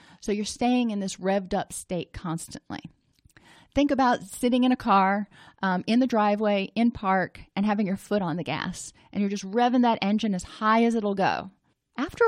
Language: English